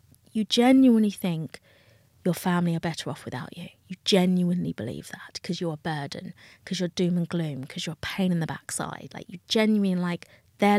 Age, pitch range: 30-49, 140-195 Hz